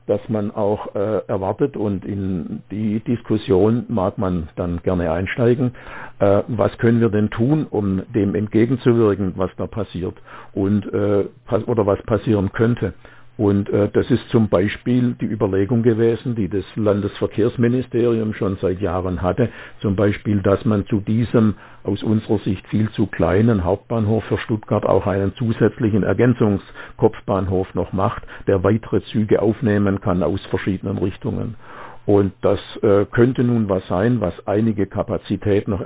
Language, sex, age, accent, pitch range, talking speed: German, male, 60-79, German, 100-120 Hz, 145 wpm